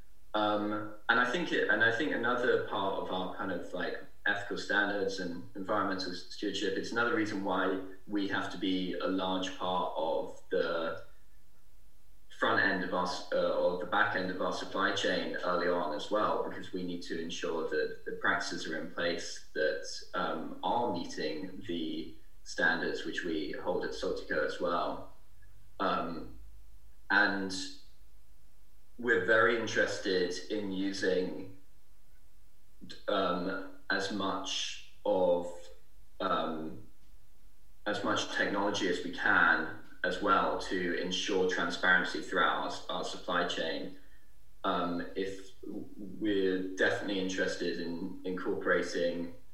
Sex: male